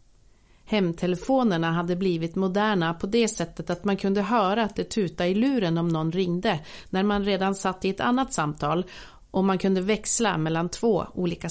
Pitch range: 170-205 Hz